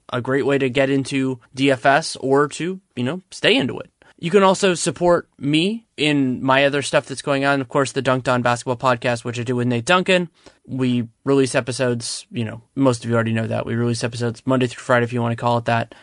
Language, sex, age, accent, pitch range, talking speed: English, male, 20-39, American, 125-140 Hz, 235 wpm